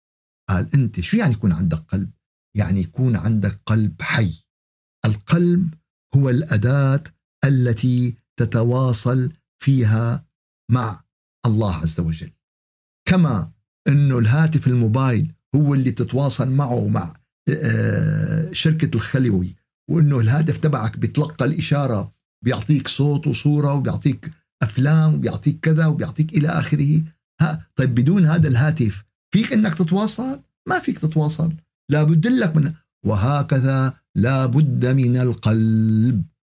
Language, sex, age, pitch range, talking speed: Arabic, male, 50-69, 115-155 Hz, 105 wpm